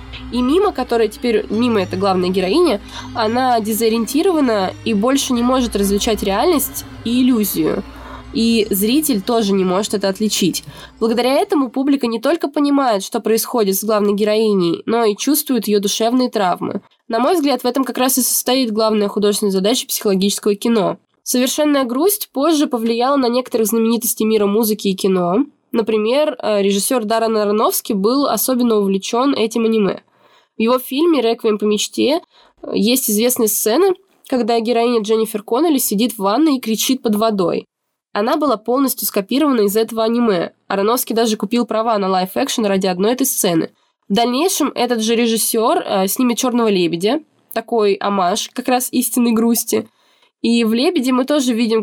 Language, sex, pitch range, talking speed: Russian, female, 215-255 Hz, 155 wpm